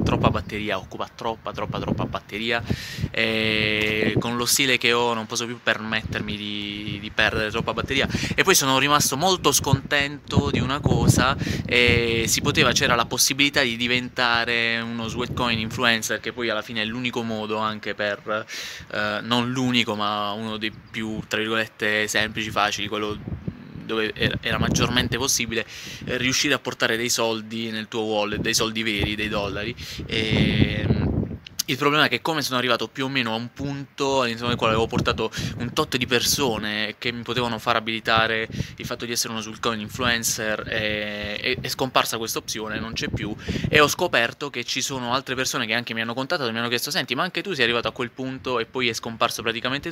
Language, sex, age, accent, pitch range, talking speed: Italian, male, 20-39, native, 110-130 Hz, 180 wpm